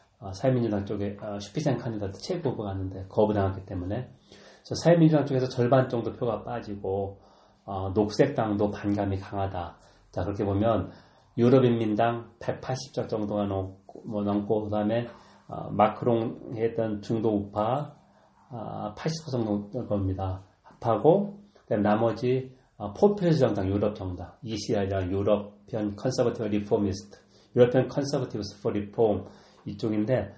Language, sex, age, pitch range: Korean, male, 30-49, 100-125 Hz